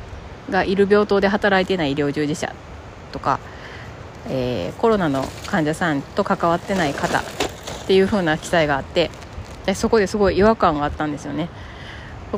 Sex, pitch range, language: female, 135-205 Hz, Japanese